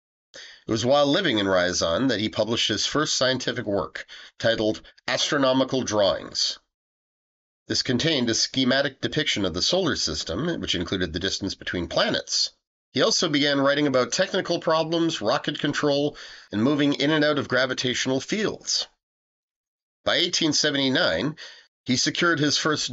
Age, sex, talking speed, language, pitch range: 40-59, male, 140 wpm, English, 115-150 Hz